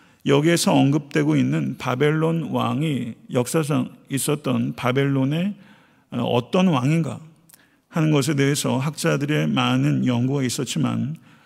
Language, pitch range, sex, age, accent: Korean, 130-165 Hz, male, 50-69, native